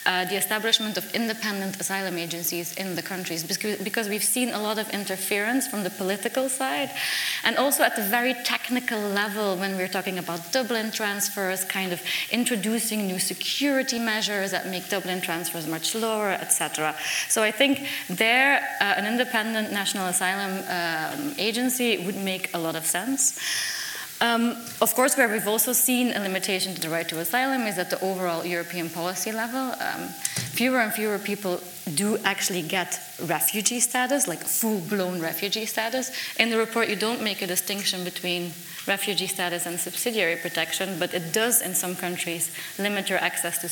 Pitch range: 180-225 Hz